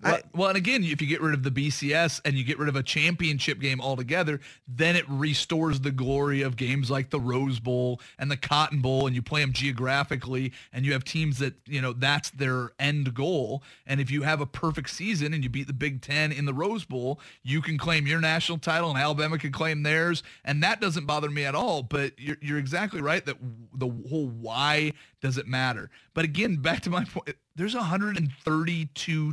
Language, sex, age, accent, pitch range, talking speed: English, male, 30-49, American, 135-160 Hz, 215 wpm